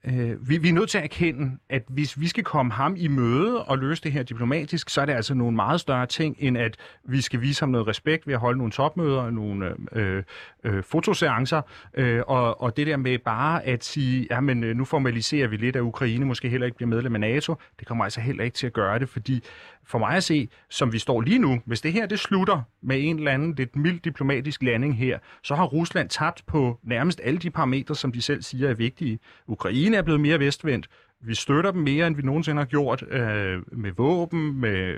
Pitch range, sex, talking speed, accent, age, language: 115-150 Hz, male, 230 wpm, native, 30-49, Danish